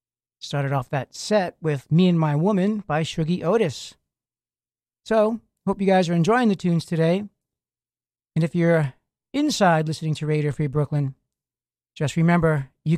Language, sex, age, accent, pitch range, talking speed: English, male, 40-59, American, 145-185 Hz, 155 wpm